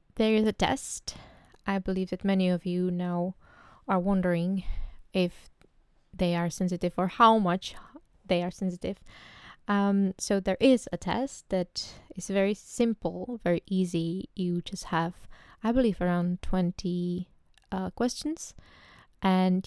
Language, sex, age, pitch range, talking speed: English, female, 20-39, 170-195 Hz, 135 wpm